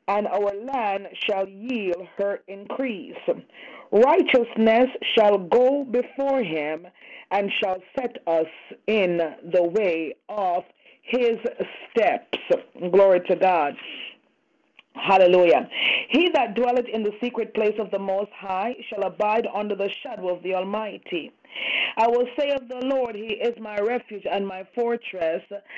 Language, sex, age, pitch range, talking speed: English, female, 30-49, 190-245 Hz, 135 wpm